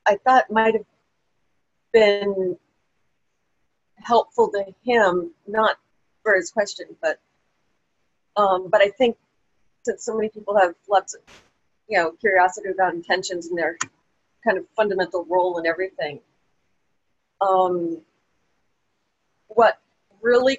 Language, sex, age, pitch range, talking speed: English, female, 40-59, 190-230 Hz, 115 wpm